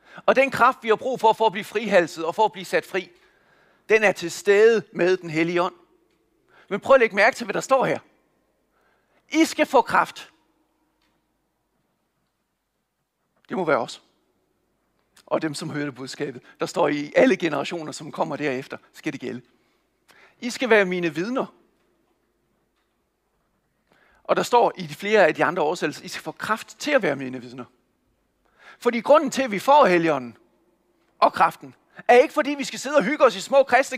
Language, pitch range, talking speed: Danish, 175-265 Hz, 185 wpm